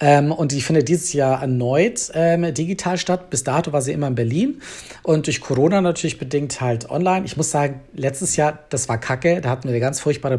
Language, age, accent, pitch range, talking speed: German, 40-59, German, 135-165 Hz, 220 wpm